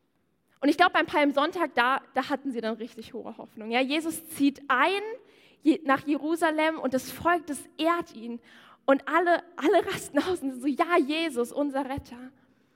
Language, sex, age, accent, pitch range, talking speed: German, female, 10-29, German, 255-330 Hz, 165 wpm